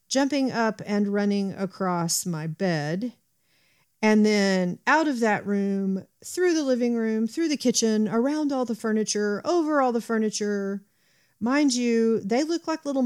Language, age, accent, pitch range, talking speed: English, 40-59, American, 175-230 Hz, 155 wpm